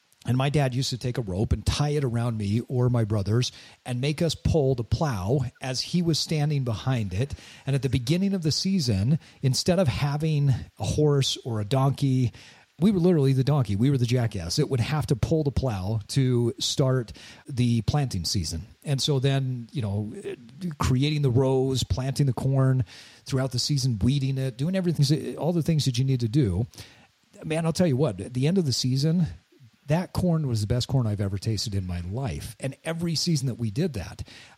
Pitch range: 115-150 Hz